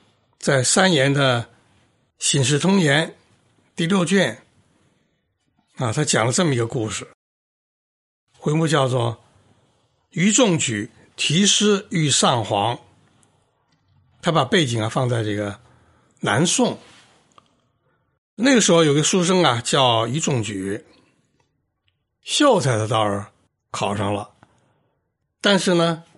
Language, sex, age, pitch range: Chinese, male, 60-79, 115-175 Hz